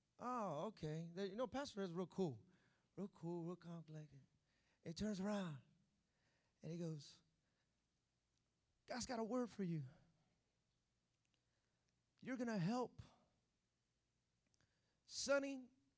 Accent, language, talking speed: American, English, 110 wpm